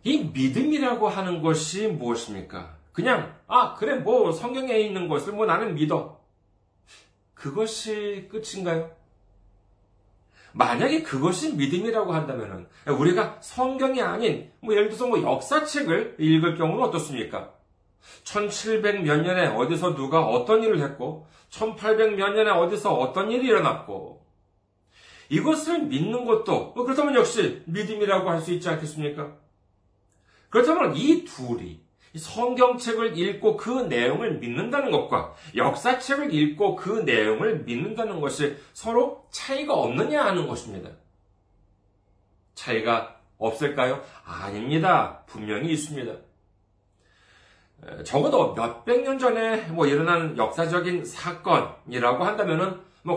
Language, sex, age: Korean, male, 40-59